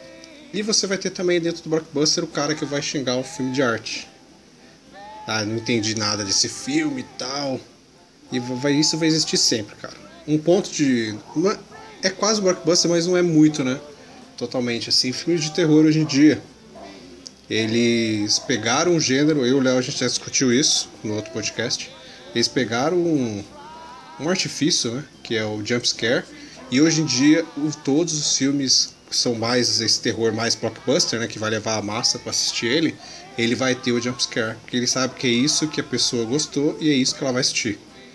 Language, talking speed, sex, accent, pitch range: Portuguese, 195 wpm, male, Brazilian, 120-160 Hz